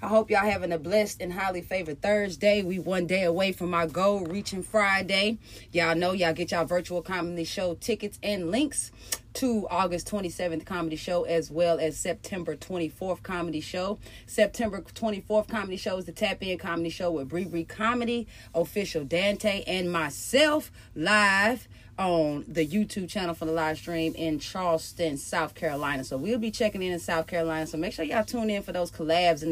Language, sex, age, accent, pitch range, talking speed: English, female, 30-49, American, 165-200 Hz, 185 wpm